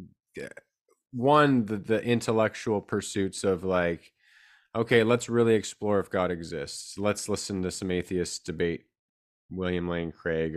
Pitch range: 85-100 Hz